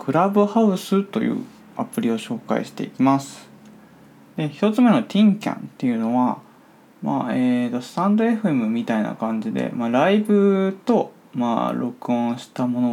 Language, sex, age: Japanese, male, 20-39